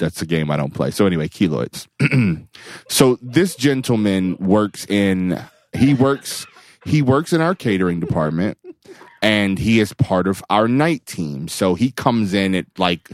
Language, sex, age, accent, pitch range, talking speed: English, male, 30-49, American, 80-105 Hz, 165 wpm